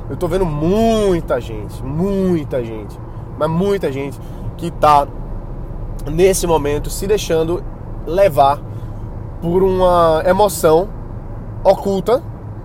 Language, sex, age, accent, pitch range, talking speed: Portuguese, male, 20-39, Brazilian, 115-170 Hz, 100 wpm